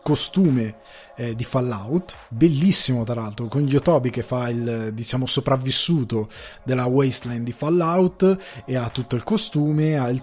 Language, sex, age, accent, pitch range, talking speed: Italian, male, 20-39, native, 120-145 Hz, 145 wpm